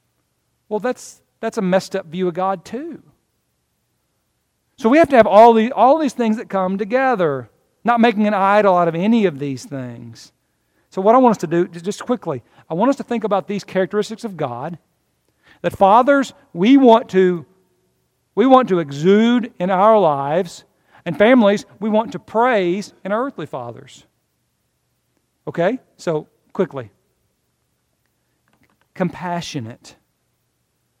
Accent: American